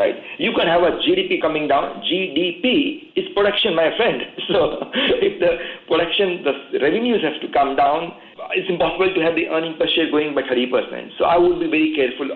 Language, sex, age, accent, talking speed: English, male, 50-69, Indian, 195 wpm